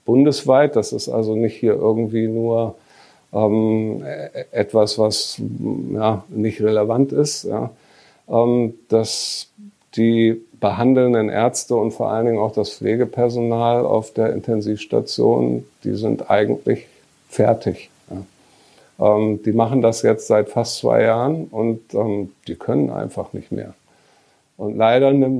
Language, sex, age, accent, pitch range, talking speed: German, male, 50-69, German, 110-125 Hz, 130 wpm